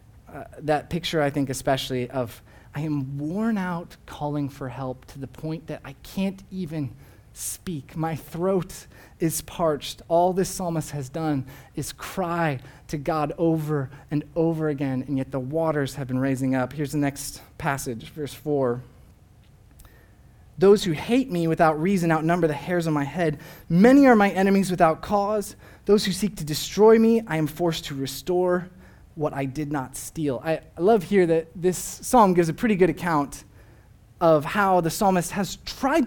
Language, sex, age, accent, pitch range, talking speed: English, male, 30-49, American, 150-235 Hz, 175 wpm